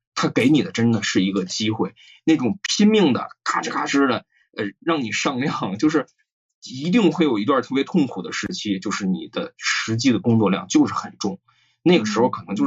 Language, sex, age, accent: Chinese, male, 20-39, native